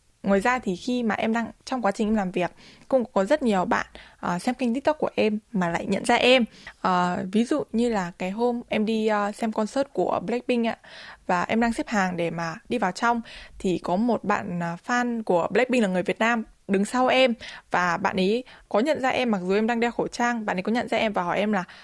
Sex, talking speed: female, 255 wpm